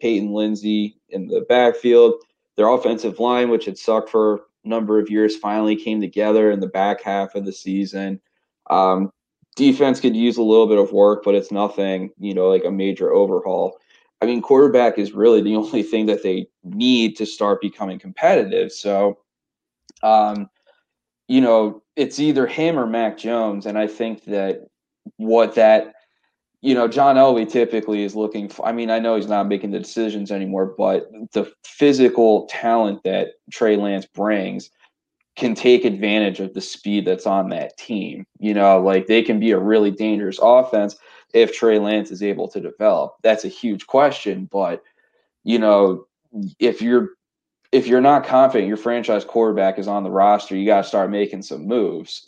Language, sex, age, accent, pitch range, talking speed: English, male, 20-39, American, 100-120 Hz, 180 wpm